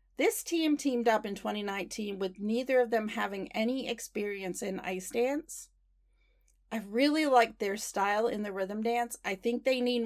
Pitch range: 195-240 Hz